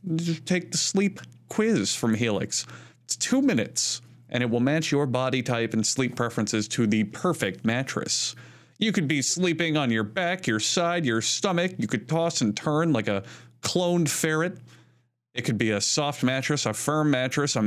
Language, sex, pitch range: English, male, 120-165 Hz